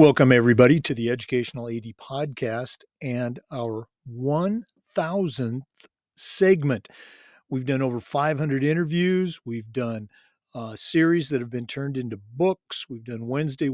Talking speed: 125 wpm